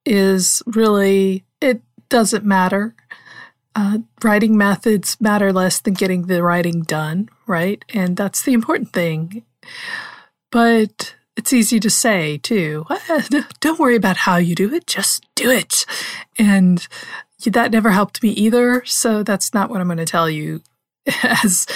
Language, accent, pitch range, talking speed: English, American, 195-245 Hz, 145 wpm